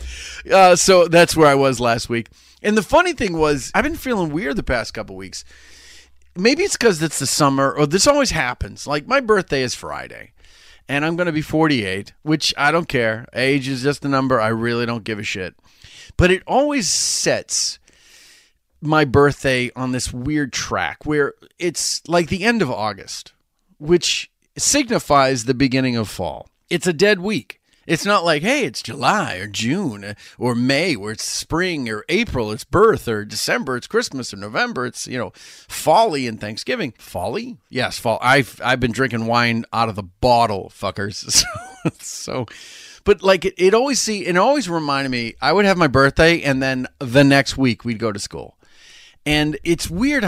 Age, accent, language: 30-49, American, English